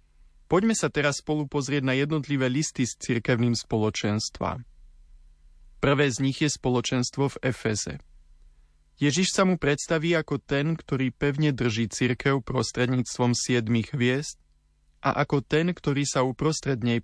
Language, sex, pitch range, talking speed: Slovak, male, 105-145 Hz, 130 wpm